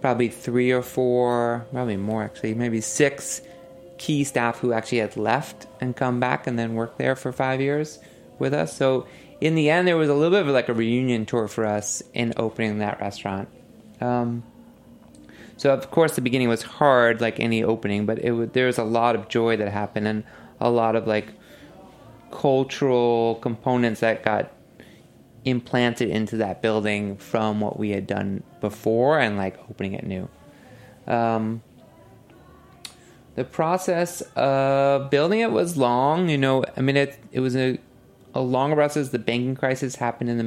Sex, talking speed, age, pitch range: male, 170 wpm, 20-39, 115-130 Hz